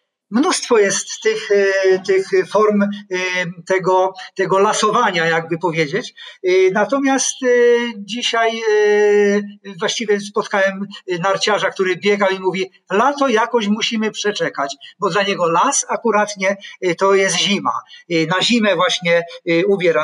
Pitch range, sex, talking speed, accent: 175-220 Hz, male, 105 wpm, native